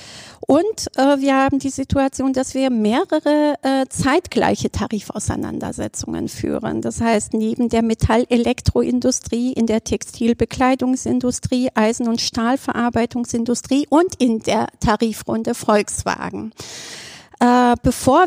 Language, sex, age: German, female, 40-59